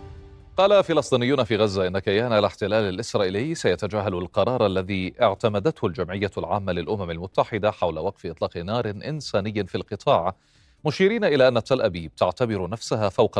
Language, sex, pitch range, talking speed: Arabic, male, 95-120 Hz, 140 wpm